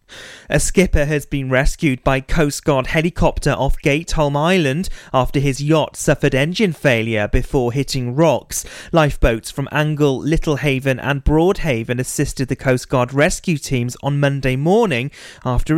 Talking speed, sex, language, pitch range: 145 wpm, male, English, 125-155 Hz